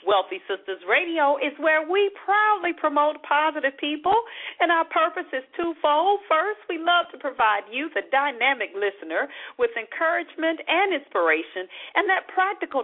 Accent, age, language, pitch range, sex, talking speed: American, 50-69, English, 220-345 Hz, female, 145 wpm